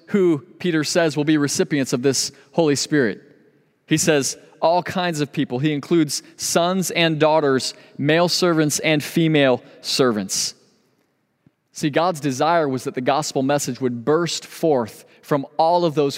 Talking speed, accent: 150 wpm, American